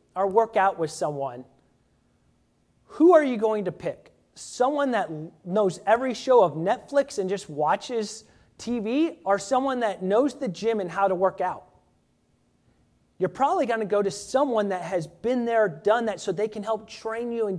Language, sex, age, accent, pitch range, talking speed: English, male, 30-49, American, 185-245 Hz, 180 wpm